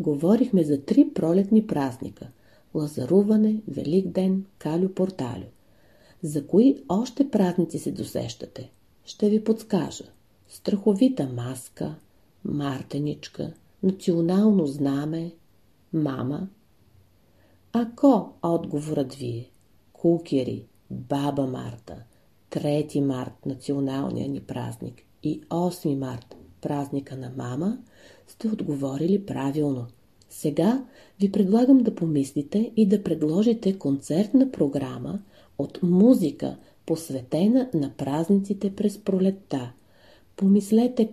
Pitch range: 135-205 Hz